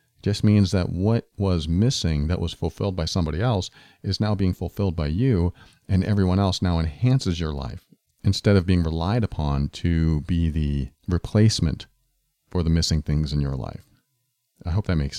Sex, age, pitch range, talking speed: male, 40-59, 90-125 Hz, 180 wpm